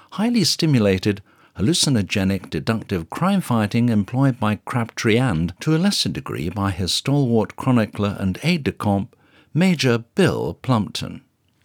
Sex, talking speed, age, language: male, 115 wpm, 50-69, English